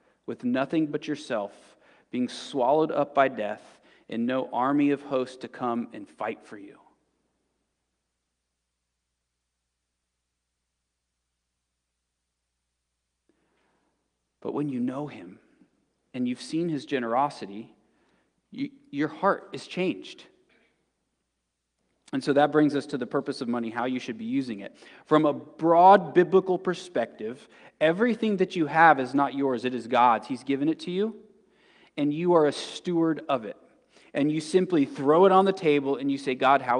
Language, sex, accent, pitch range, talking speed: English, male, American, 125-195 Hz, 145 wpm